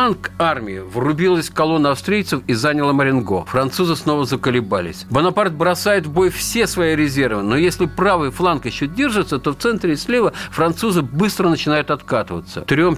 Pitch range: 130-190 Hz